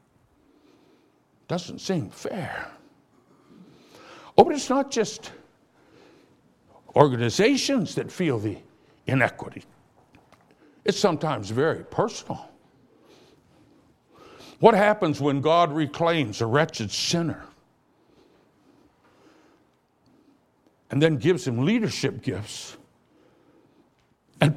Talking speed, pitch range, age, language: 80 wpm, 145-230 Hz, 60-79, English